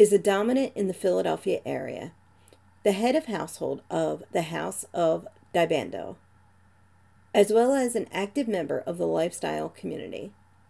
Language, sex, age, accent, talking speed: English, female, 40-59, American, 145 wpm